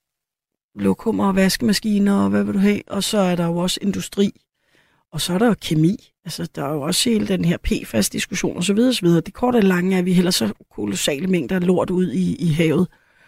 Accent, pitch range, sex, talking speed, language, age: native, 175-205 Hz, female, 225 wpm, Danish, 30-49